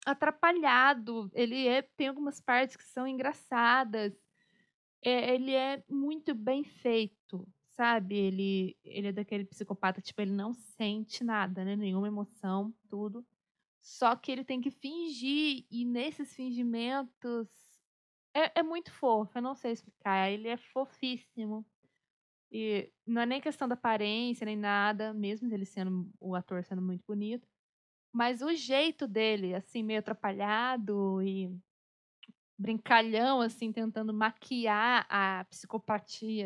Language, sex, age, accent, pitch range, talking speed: Portuguese, female, 20-39, Brazilian, 210-260 Hz, 135 wpm